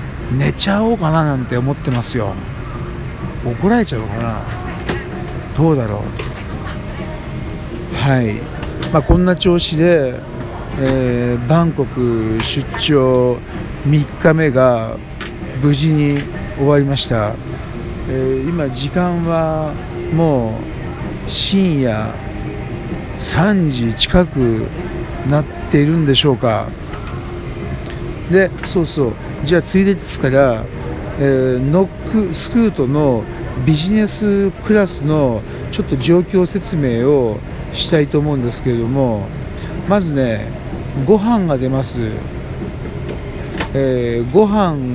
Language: Japanese